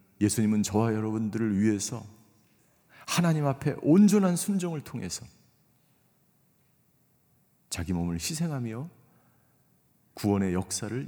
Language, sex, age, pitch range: Korean, male, 40-59, 95-140 Hz